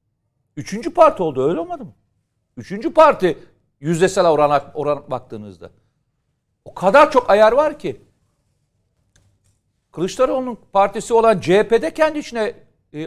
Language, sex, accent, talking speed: Turkish, male, native, 115 wpm